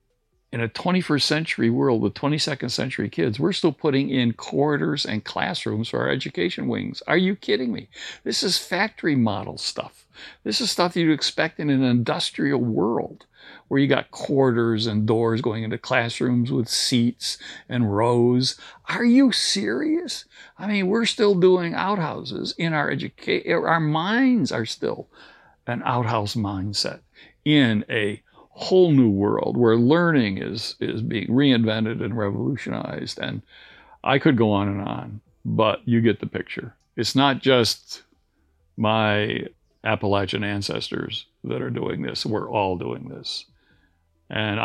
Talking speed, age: 150 wpm, 60-79